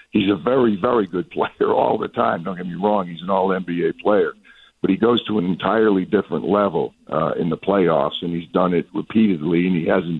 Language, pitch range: English, 95-115 Hz